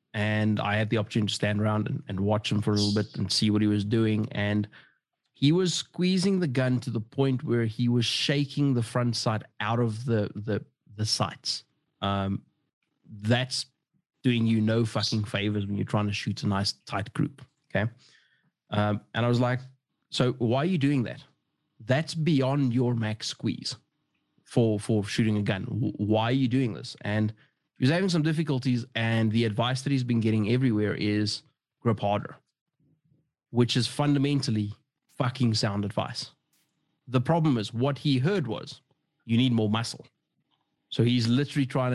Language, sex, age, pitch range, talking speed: English, male, 20-39, 110-140 Hz, 175 wpm